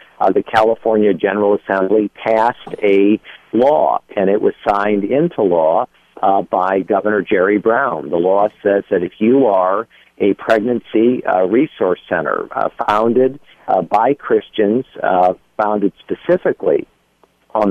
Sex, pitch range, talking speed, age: male, 95-115 Hz, 135 wpm, 50-69